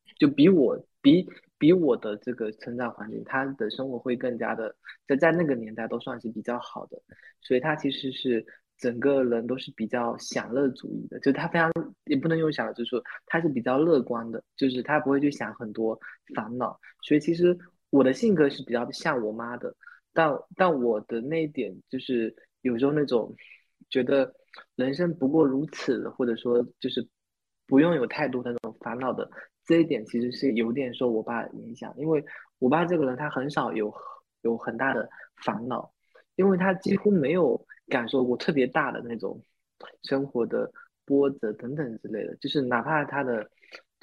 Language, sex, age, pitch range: Chinese, male, 20-39, 120-150 Hz